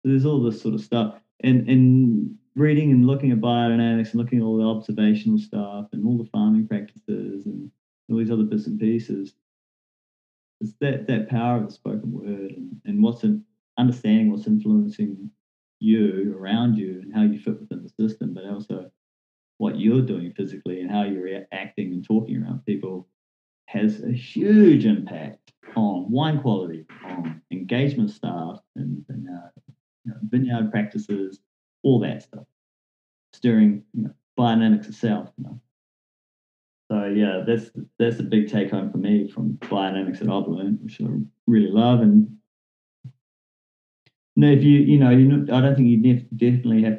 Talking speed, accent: 160 wpm, Australian